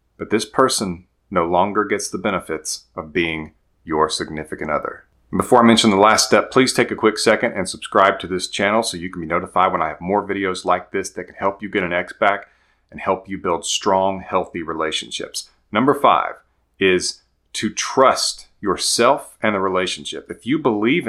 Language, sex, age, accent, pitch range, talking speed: English, male, 40-59, American, 95-120 Hz, 195 wpm